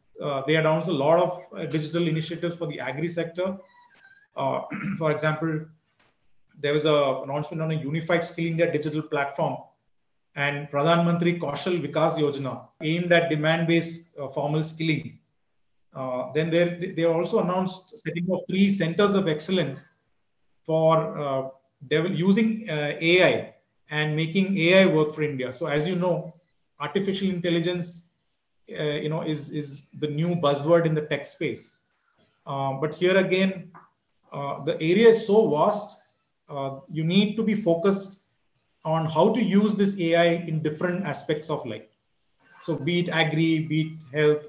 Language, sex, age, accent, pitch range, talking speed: English, male, 30-49, Indian, 150-175 Hz, 150 wpm